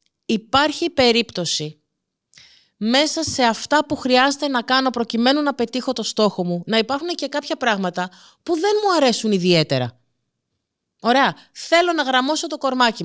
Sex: female